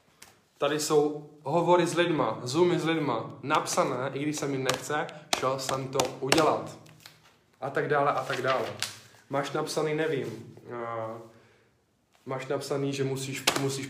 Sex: male